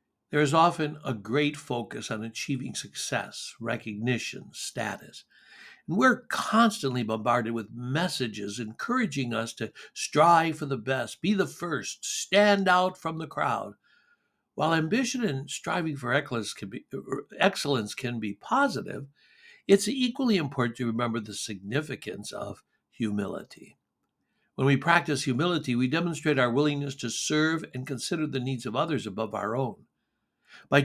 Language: English